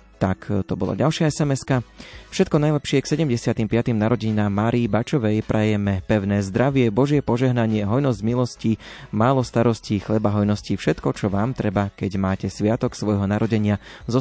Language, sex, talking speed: Slovak, male, 140 wpm